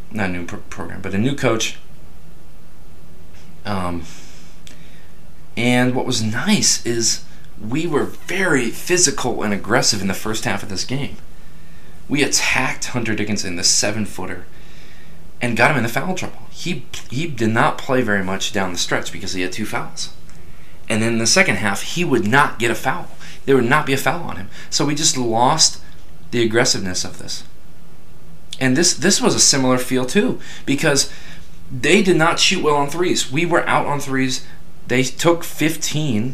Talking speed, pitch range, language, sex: 175 wpm, 95-145 Hz, English, male